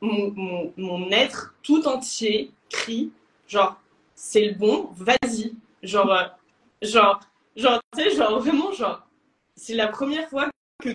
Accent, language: French, French